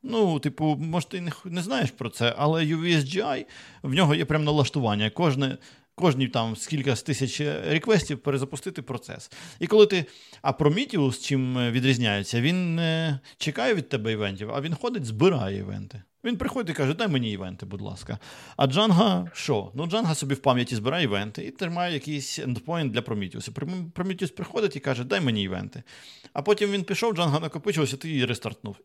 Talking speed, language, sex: 175 wpm, Ukrainian, male